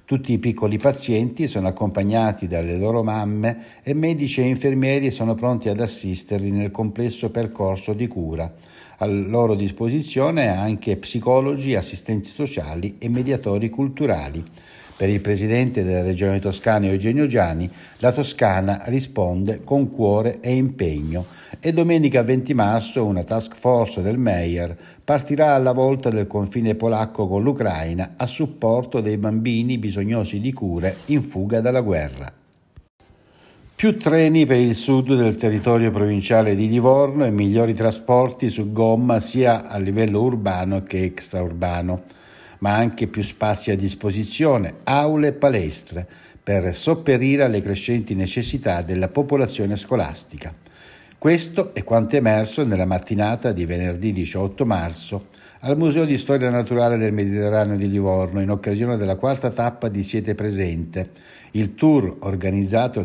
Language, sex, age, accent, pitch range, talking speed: Italian, male, 60-79, native, 100-125 Hz, 135 wpm